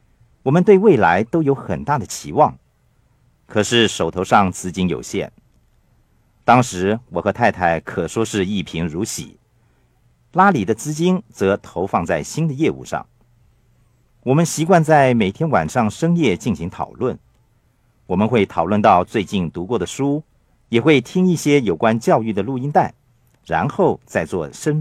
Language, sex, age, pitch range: Chinese, male, 50-69, 110-155 Hz